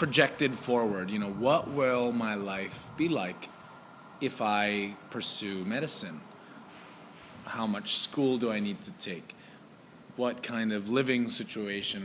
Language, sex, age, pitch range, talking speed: English, male, 30-49, 105-130 Hz, 135 wpm